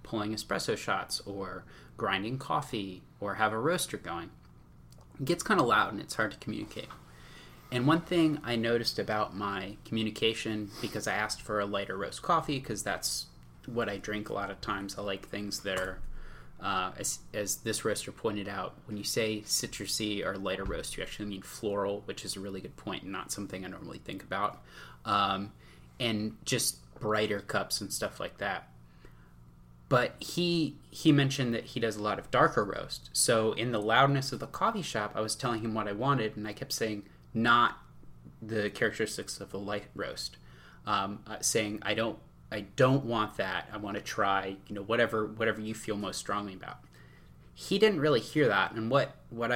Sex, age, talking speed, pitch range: male, 20-39, 195 wpm, 95-115 Hz